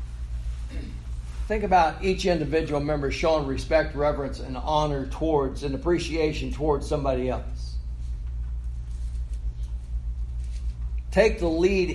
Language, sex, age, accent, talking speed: English, male, 60-79, American, 95 wpm